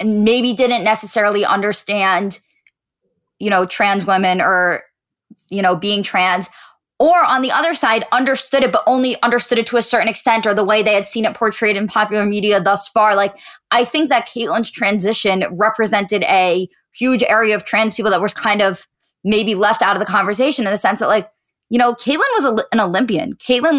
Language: English